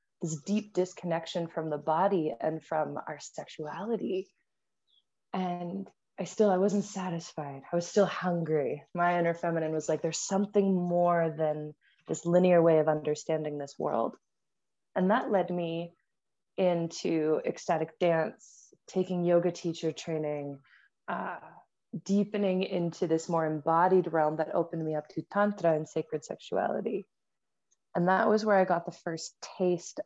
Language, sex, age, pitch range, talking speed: English, female, 20-39, 160-185 Hz, 145 wpm